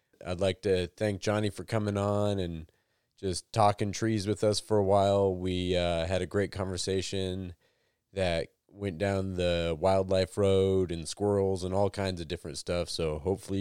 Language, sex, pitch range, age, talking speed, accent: English, male, 90-105 Hz, 30-49, 170 wpm, American